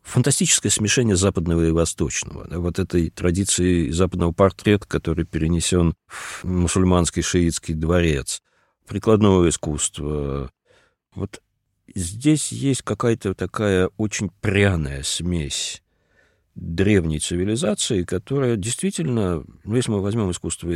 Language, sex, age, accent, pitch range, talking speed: Russian, male, 50-69, native, 80-105 Hz, 100 wpm